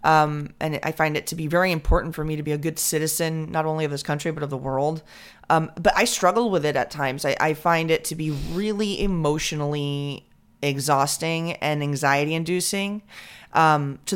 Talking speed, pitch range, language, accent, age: 200 wpm, 150-180 Hz, English, American, 30-49